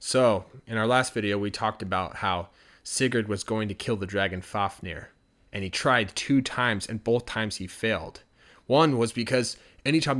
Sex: male